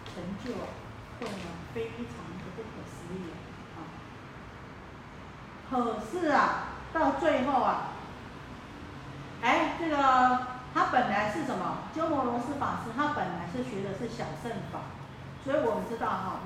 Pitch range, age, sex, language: 185-245 Hz, 40-59, female, Chinese